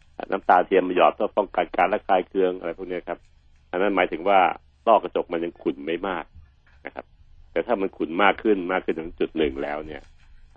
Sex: male